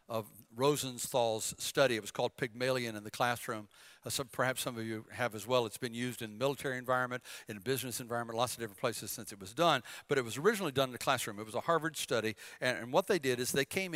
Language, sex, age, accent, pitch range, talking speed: English, male, 60-79, American, 130-195 Hz, 250 wpm